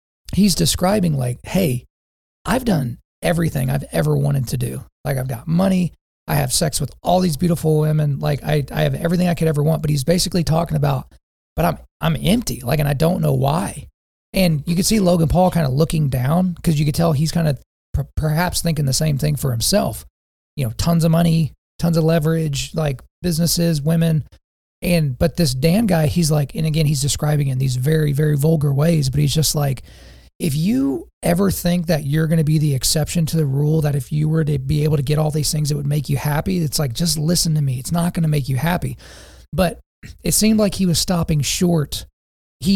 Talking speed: 225 wpm